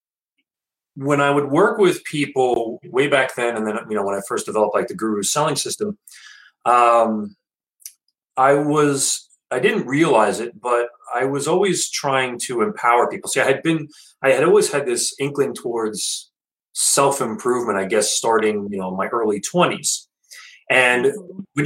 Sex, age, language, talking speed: male, 30-49, English, 165 wpm